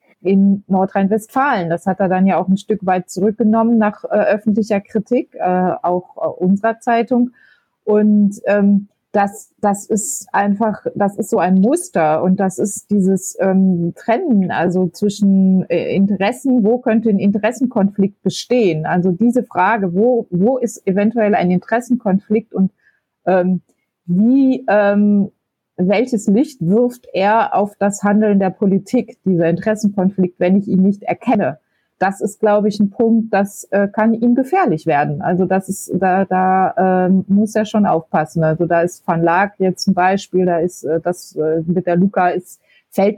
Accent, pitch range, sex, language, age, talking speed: German, 185-215 Hz, female, German, 30-49, 160 wpm